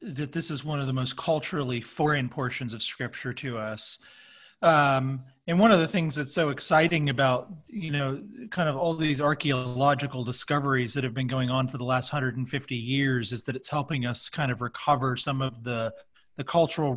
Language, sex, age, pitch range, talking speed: English, male, 30-49, 130-160 Hz, 195 wpm